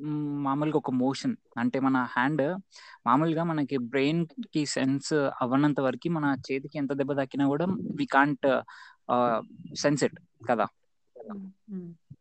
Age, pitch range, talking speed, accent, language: 20-39, 135-170 Hz, 120 wpm, native, Telugu